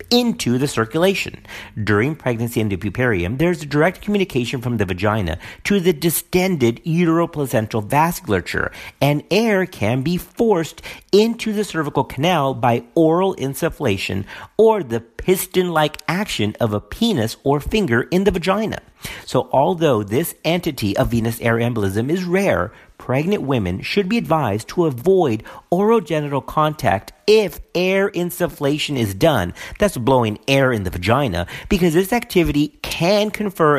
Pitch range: 115-180 Hz